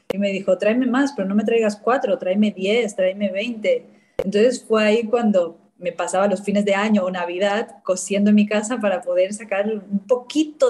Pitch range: 180-225 Hz